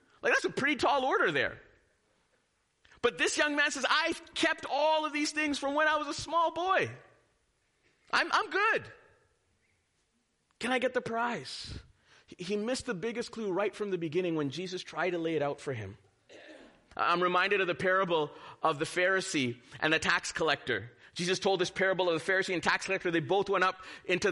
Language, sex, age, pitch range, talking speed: English, male, 30-49, 150-245 Hz, 190 wpm